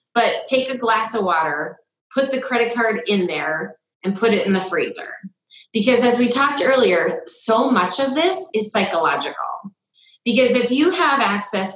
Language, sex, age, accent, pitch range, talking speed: English, female, 30-49, American, 185-275 Hz, 175 wpm